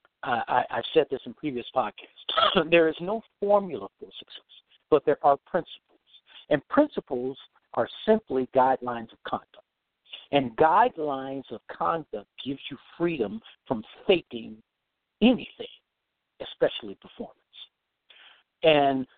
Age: 60-79